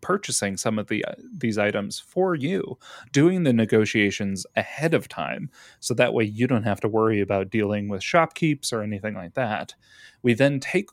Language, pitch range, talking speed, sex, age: English, 105-125 Hz, 185 wpm, male, 30-49